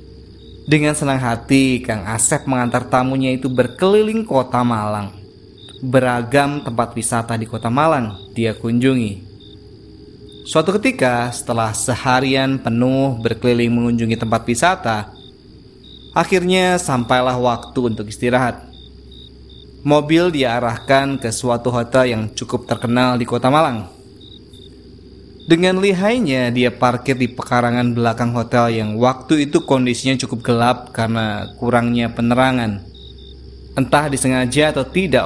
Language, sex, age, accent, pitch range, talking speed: Indonesian, male, 20-39, native, 110-135 Hz, 110 wpm